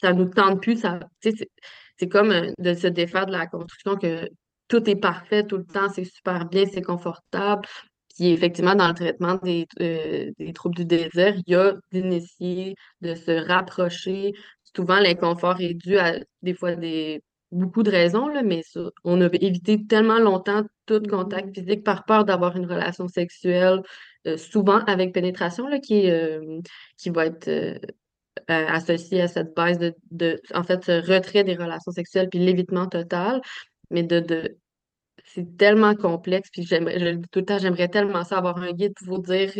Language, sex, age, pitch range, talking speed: French, female, 20-39, 175-200 Hz, 175 wpm